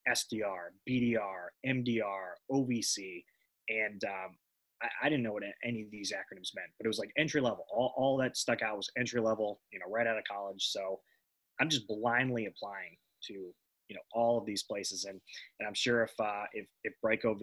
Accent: American